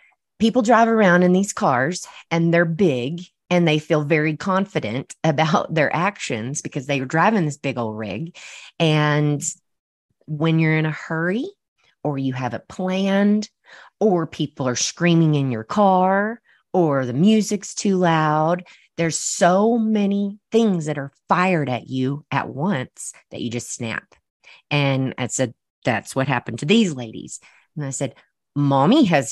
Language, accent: English, American